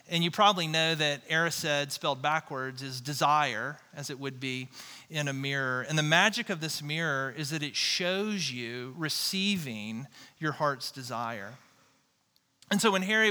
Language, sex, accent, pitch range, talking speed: English, male, American, 145-185 Hz, 160 wpm